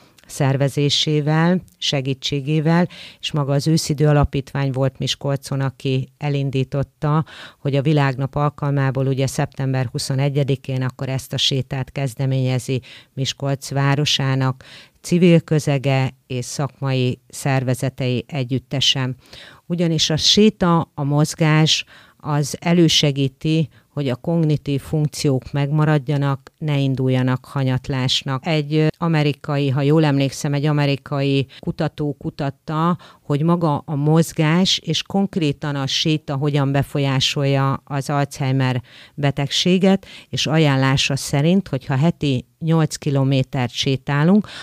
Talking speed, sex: 100 wpm, female